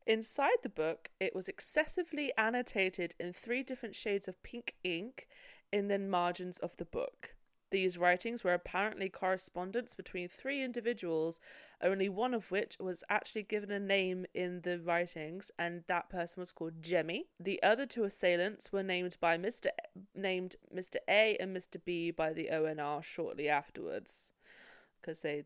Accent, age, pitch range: British, 20-39, 175-220 Hz